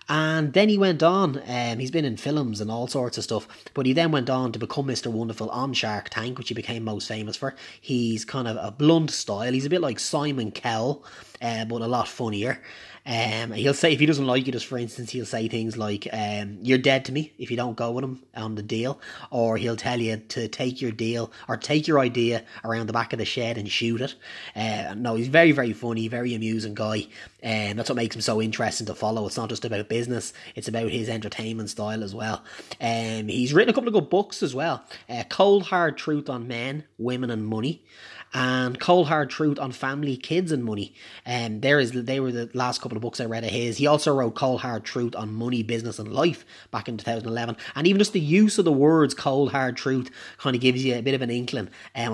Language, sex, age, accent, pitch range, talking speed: English, male, 20-39, Irish, 110-135 Hz, 240 wpm